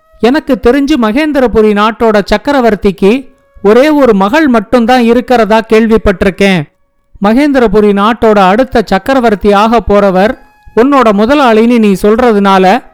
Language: Tamil